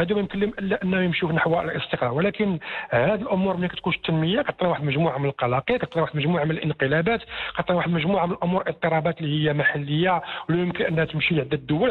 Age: 50-69